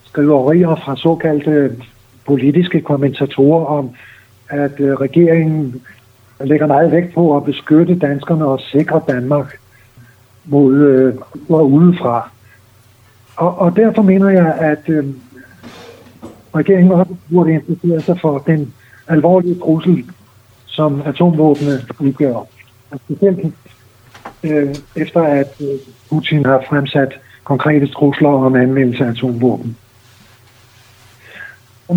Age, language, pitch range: 60-79, Danish, 125-155 Hz